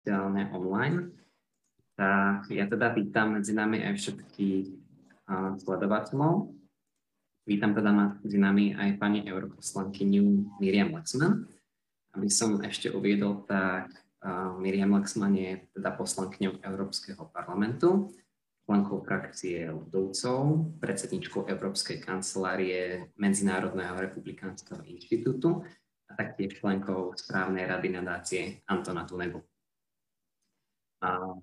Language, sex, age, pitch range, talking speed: Slovak, male, 20-39, 95-105 Hz, 95 wpm